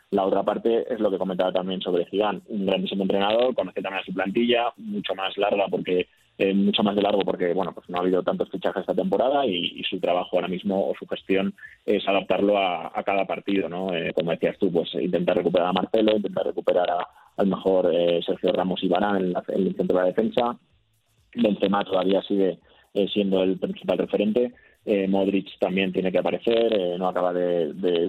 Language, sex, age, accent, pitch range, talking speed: Spanish, male, 20-39, Spanish, 90-100 Hz, 210 wpm